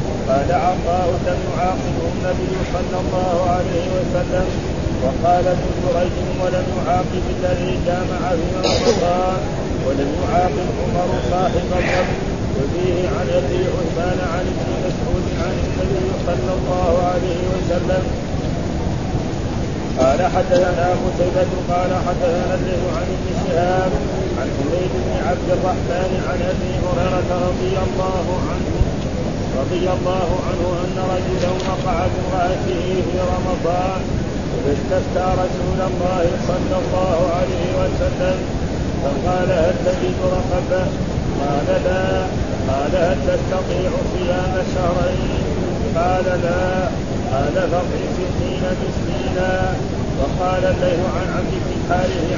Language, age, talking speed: Arabic, 30-49, 110 wpm